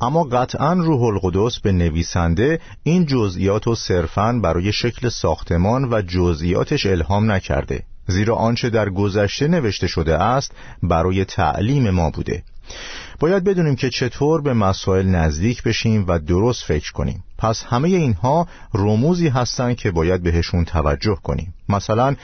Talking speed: 135 wpm